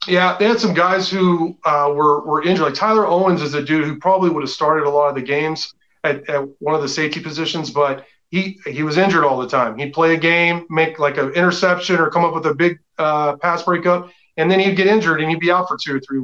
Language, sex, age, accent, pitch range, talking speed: English, male, 30-49, American, 145-175 Hz, 260 wpm